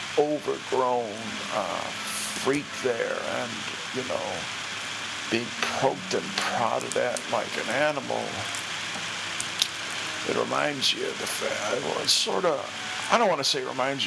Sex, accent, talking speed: male, American, 130 wpm